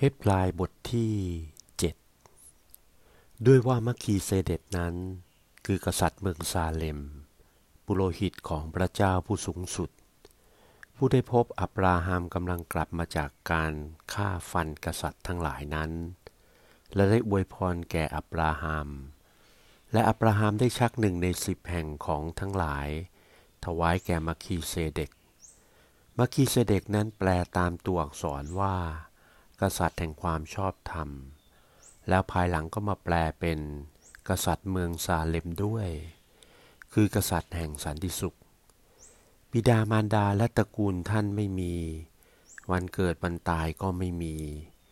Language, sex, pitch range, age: Thai, male, 80-100 Hz, 60-79